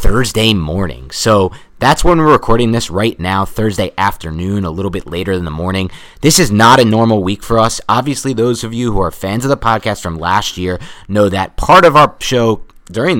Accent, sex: American, male